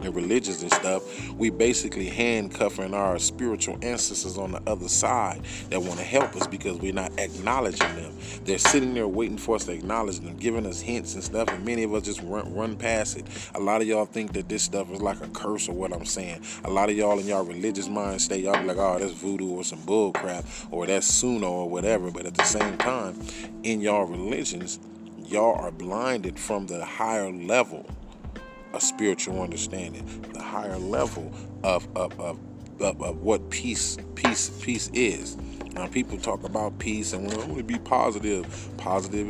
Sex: male